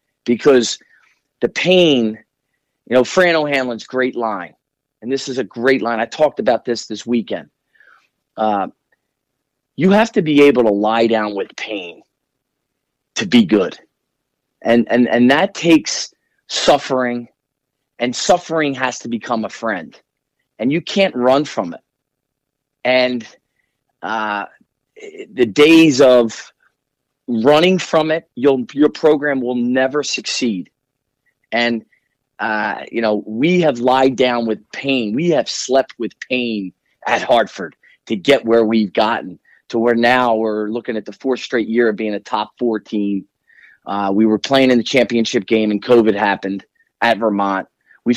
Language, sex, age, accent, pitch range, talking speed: English, male, 40-59, American, 115-140 Hz, 150 wpm